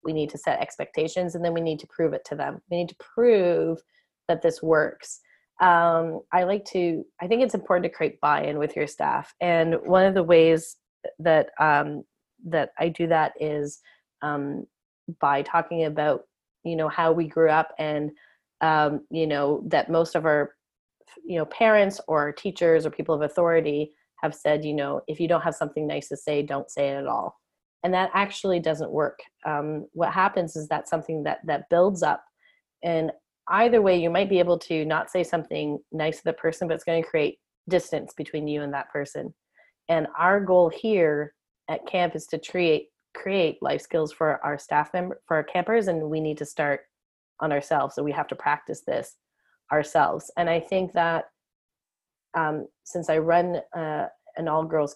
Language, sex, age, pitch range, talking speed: English, female, 30-49, 155-180 Hz, 190 wpm